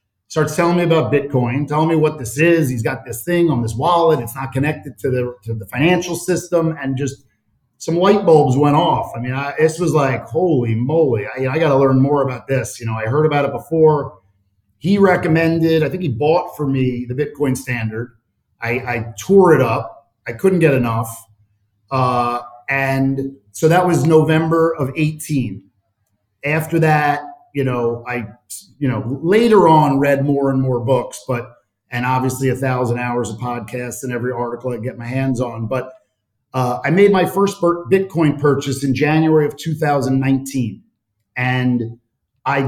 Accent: American